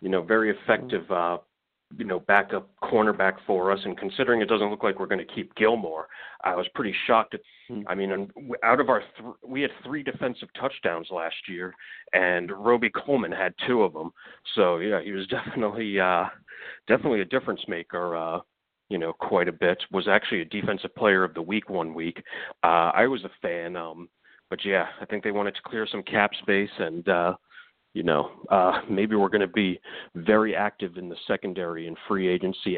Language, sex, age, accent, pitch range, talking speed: English, male, 40-59, American, 85-105 Hz, 195 wpm